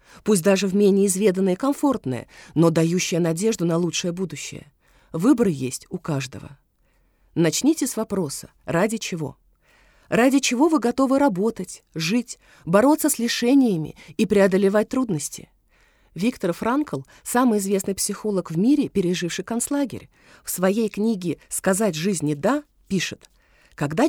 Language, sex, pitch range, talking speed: Russian, female, 170-235 Hz, 125 wpm